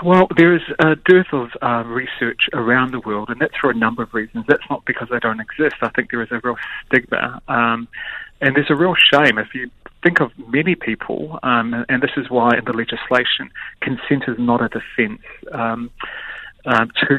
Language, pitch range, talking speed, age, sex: English, 120-150 Hz, 200 wpm, 30-49, male